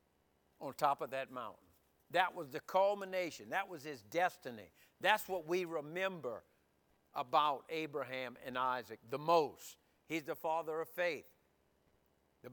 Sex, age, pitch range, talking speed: male, 60-79, 155-185 Hz, 140 wpm